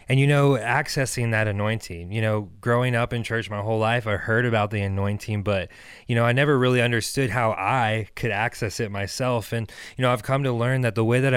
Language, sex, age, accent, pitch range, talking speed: English, male, 20-39, American, 110-130 Hz, 230 wpm